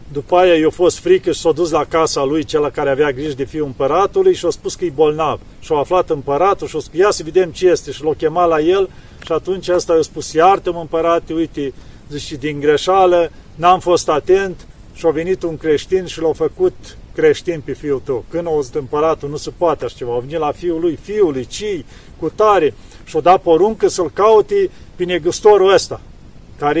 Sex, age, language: male, 40-59, Romanian